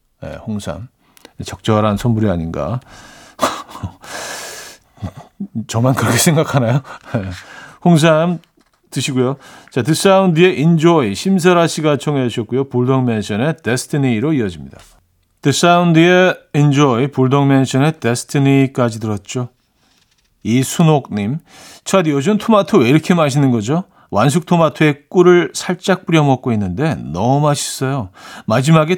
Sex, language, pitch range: male, Korean, 120-170 Hz